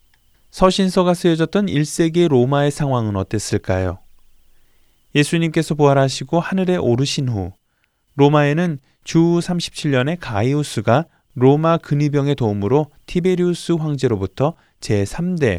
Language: Korean